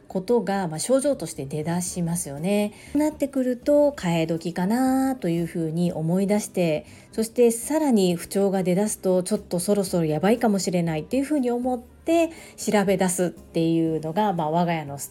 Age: 40-59